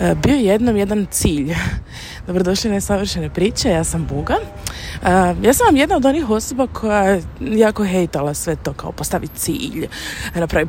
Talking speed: 155 wpm